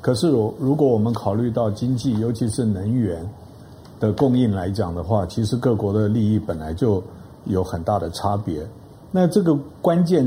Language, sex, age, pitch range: Chinese, male, 50-69, 105-145 Hz